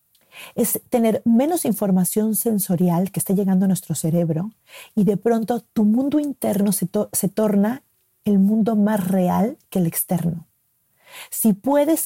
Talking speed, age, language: 150 wpm, 40-59, Spanish